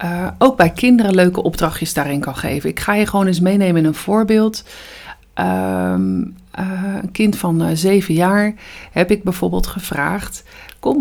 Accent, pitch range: Dutch, 160-210 Hz